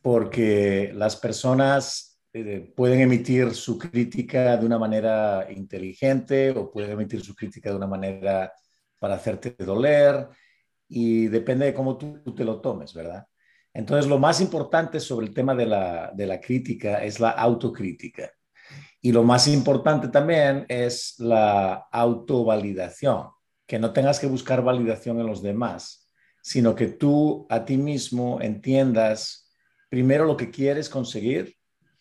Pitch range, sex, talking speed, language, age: 115-140 Hz, male, 140 wpm, English, 50-69